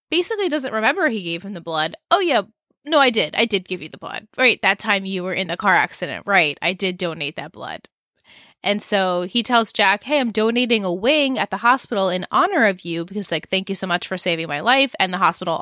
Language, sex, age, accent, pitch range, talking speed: English, female, 20-39, American, 180-240 Hz, 245 wpm